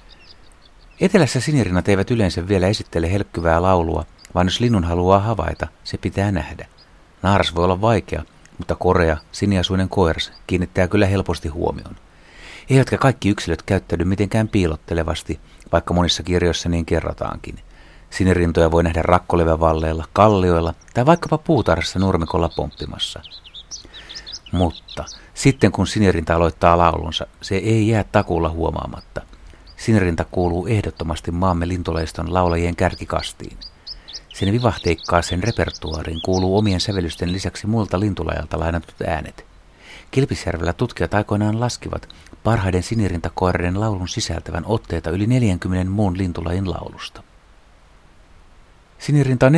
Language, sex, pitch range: Finnish, male, 85-100 Hz